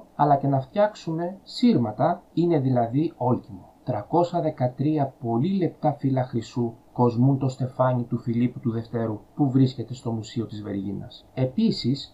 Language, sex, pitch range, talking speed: Greek, male, 125-170 Hz, 135 wpm